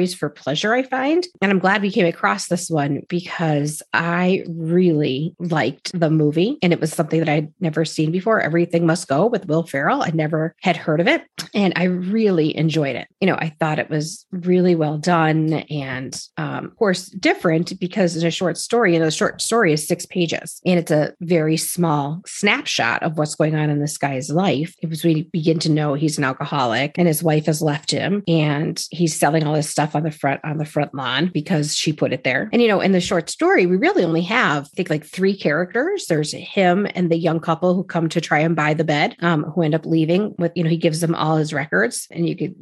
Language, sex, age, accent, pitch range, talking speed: English, female, 30-49, American, 150-180 Hz, 230 wpm